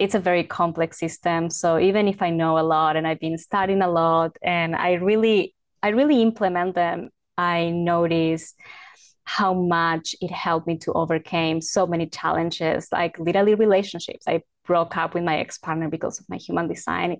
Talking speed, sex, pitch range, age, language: 180 wpm, female, 165-190 Hz, 20-39, English